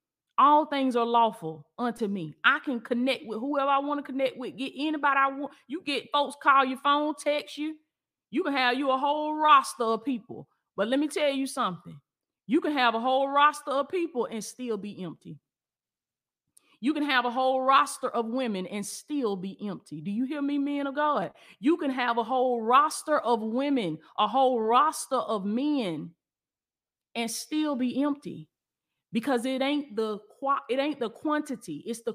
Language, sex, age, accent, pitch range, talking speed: English, female, 30-49, American, 215-280 Hz, 190 wpm